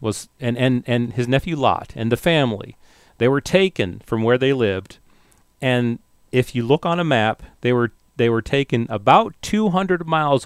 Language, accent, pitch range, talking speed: English, American, 105-135 Hz, 185 wpm